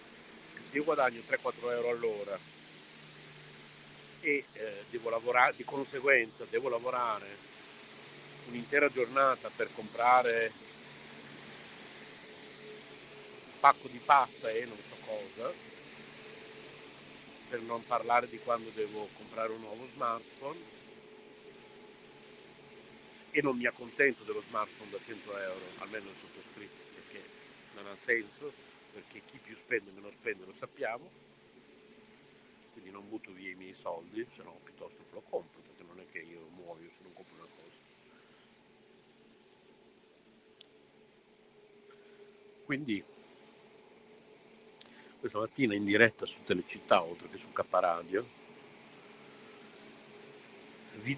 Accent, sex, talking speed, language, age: native, male, 115 wpm, Italian, 50-69